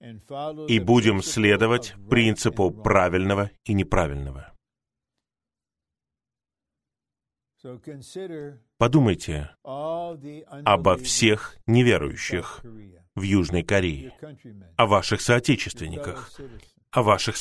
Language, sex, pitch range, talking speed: Russian, male, 100-135 Hz, 65 wpm